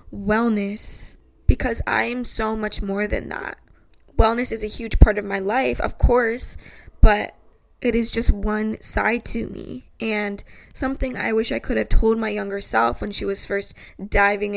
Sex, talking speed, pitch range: female, 175 wpm, 200-230 Hz